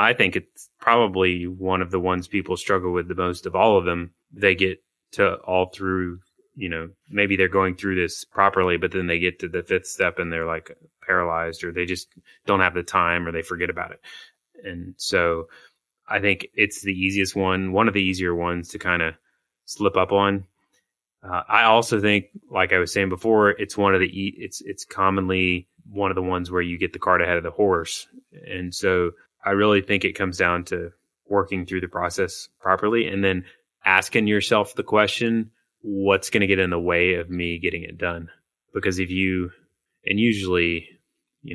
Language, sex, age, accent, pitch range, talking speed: English, male, 20-39, American, 90-100 Hz, 200 wpm